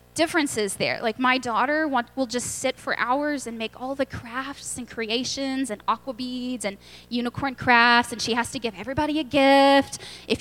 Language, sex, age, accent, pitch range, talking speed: English, female, 10-29, American, 240-305 Hz, 185 wpm